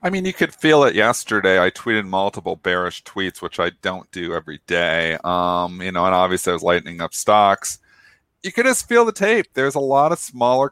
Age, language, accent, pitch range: 40-59, English, American, 100-145 Hz